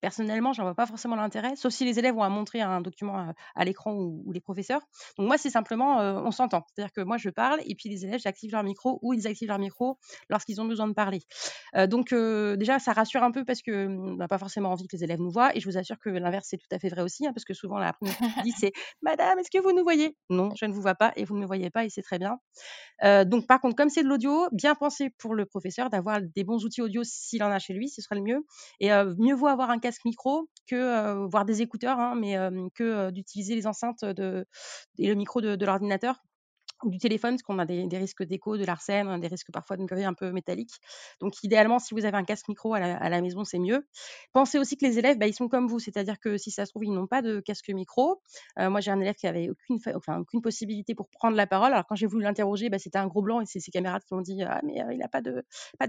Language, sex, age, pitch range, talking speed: French, female, 30-49, 195-245 Hz, 290 wpm